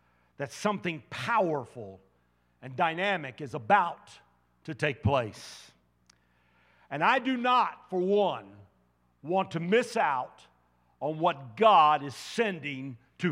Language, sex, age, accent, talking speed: English, male, 50-69, American, 115 wpm